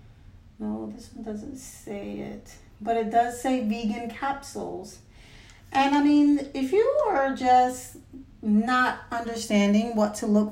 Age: 40-59